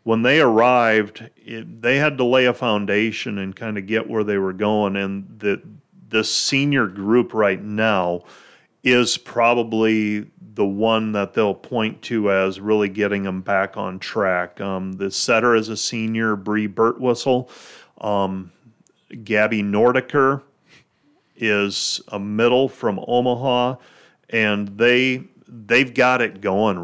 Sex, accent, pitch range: male, American, 100-120 Hz